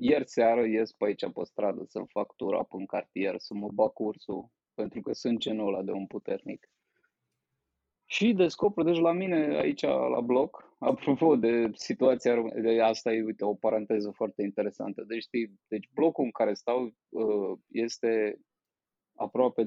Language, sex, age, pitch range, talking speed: Romanian, male, 20-39, 110-140 Hz, 155 wpm